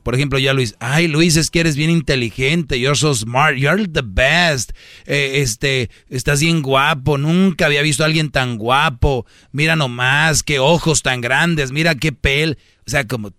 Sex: male